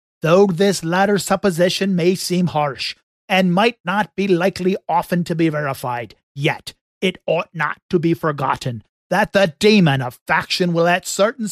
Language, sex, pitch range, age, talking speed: English, male, 150-210 Hz, 40-59, 160 wpm